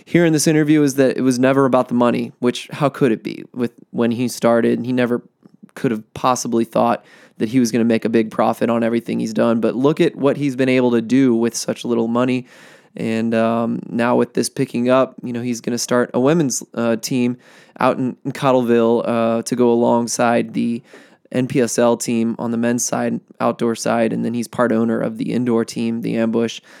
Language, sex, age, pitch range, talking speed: English, male, 20-39, 120-145 Hz, 220 wpm